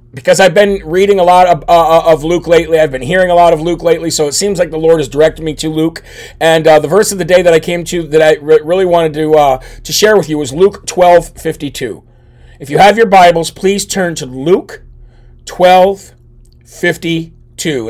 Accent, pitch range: American, 140-195 Hz